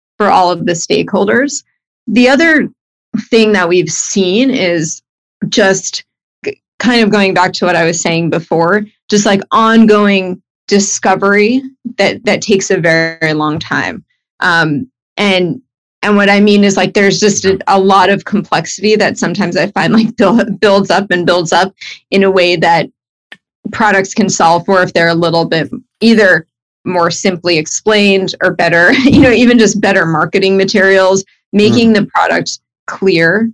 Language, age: English, 30-49